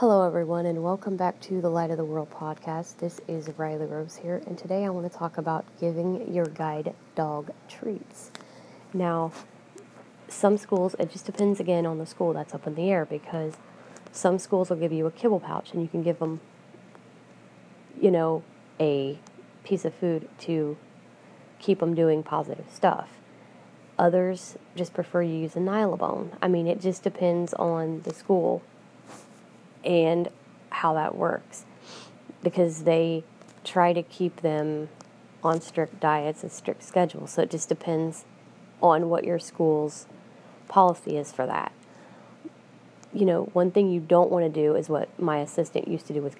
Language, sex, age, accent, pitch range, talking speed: English, female, 30-49, American, 155-180 Hz, 170 wpm